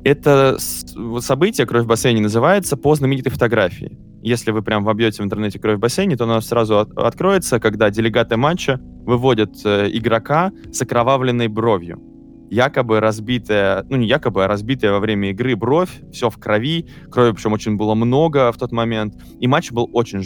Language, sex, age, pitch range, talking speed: Russian, male, 20-39, 105-130 Hz, 175 wpm